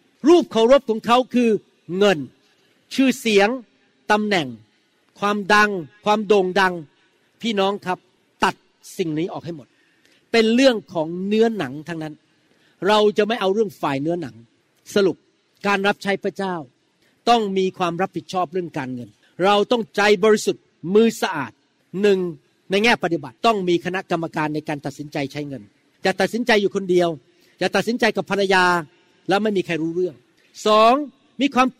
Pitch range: 175-215 Hz